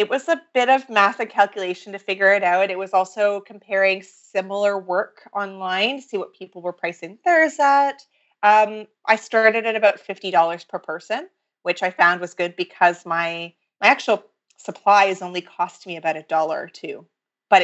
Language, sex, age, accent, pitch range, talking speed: English, female, 30-49, American, 175-215 Hz, 185 wpm